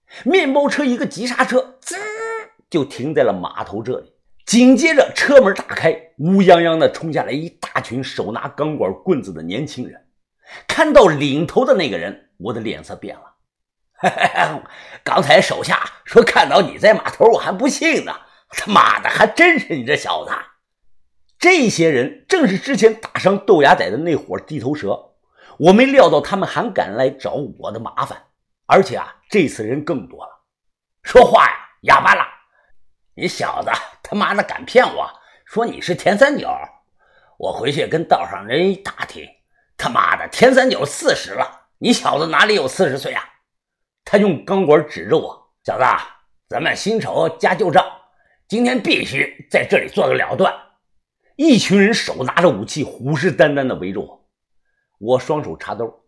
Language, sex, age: Chinese, male, 50-69